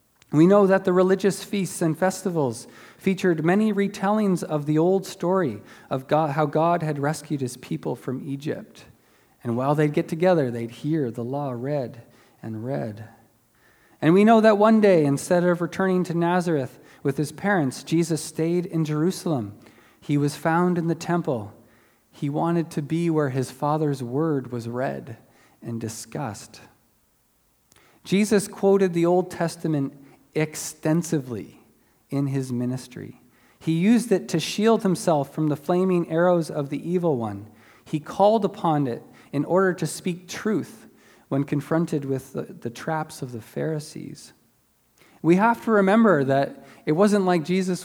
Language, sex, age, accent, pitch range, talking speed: English, male, 40-59, American, 140-180 Hz, 155 wpm